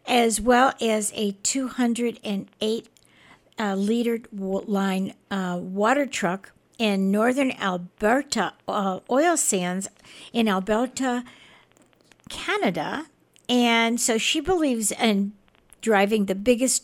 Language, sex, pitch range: English, female, 200-250 Hz